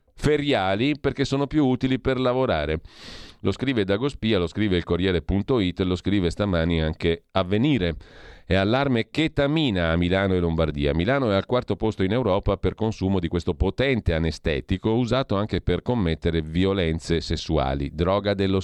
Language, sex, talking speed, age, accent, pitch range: Italian, male, 150 wpm, 40-59, native, 85-110 Hz